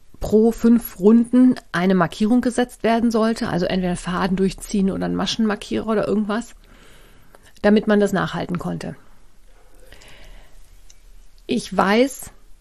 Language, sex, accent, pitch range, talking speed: German, female, German, 195-225 Hz, 120 wpm